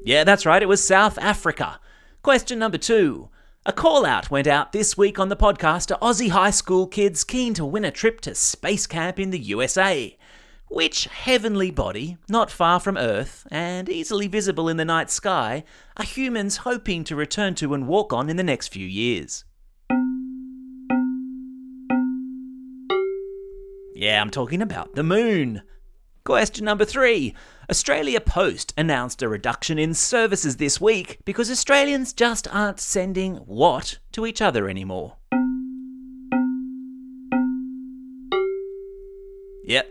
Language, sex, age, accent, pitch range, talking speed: English, male, 30-49, Australian, 155-255 Hz, 140 wpm